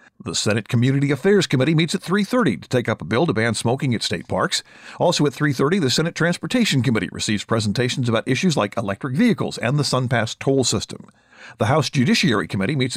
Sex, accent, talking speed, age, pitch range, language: male, American, 200 wpm, 50-69, 115-170 Hz, English